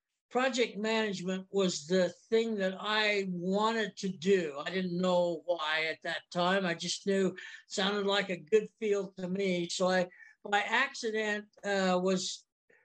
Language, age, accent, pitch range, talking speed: English, 60-79, American, 180-220 Hz, 160 wpm